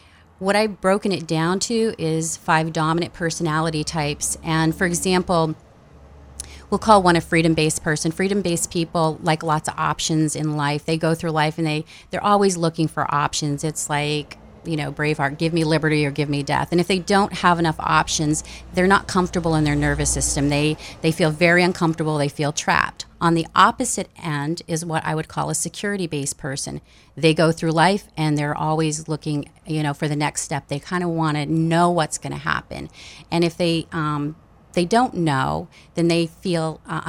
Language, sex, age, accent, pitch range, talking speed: English, female, 30-49, American, 150-175 Hz, 195 wpm